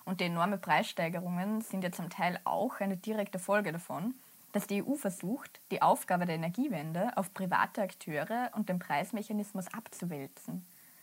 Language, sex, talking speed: German, female, 150 wpm